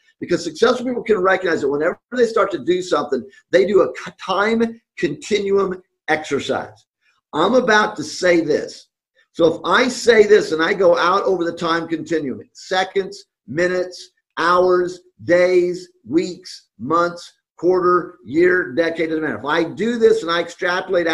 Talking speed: 155 wpm